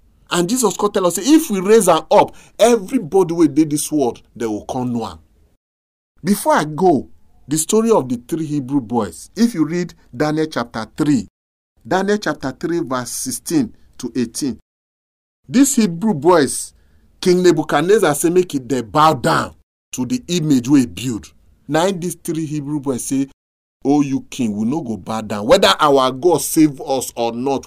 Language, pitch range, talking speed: English, 110-175 Hz, 175 wpm